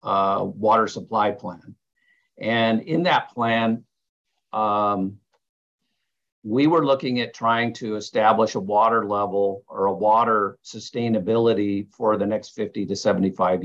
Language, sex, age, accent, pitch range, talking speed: English, male, 50-69, American, 95-115 Hz, 125 wpm